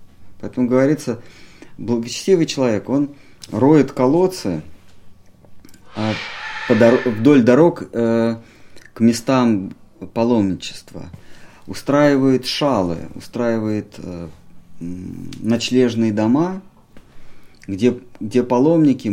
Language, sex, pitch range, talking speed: Russian, male, 100-135 Hz, 70 wpm